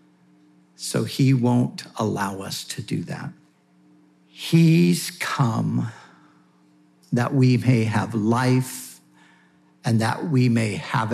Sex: male